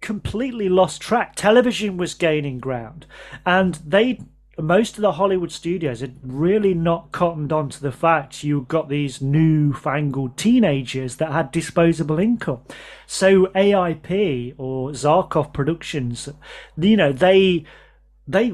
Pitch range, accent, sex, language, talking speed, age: 140-185 Hz, British, male, English, 130 wpm, 30-49